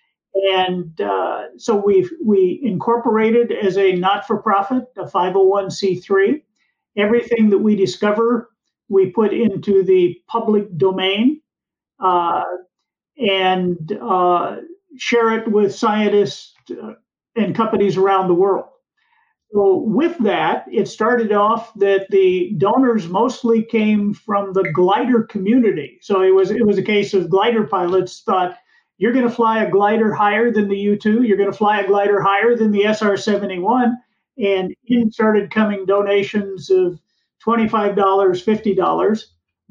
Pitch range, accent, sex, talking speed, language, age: 190-220 Hz, American, male, 135 wpm, English, 50-69